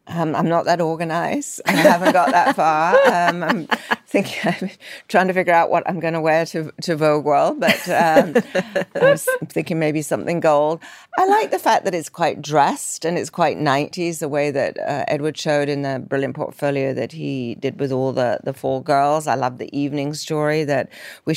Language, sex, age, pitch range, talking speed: English, female, 40-59, 140-165 Hz, 200 wpm